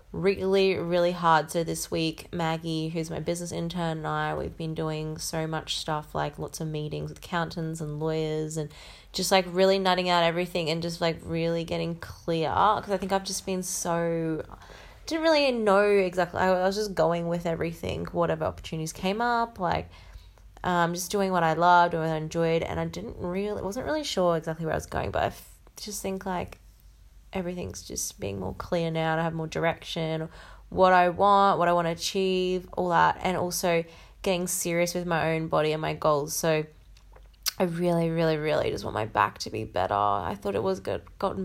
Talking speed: 205 wpm